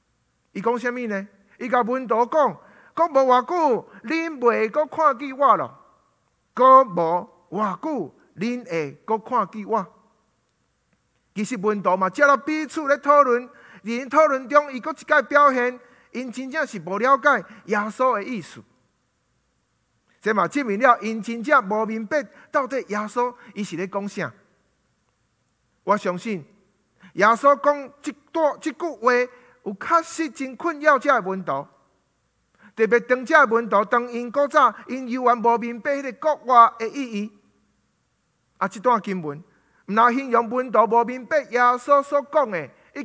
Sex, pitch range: male, 205-275 Hz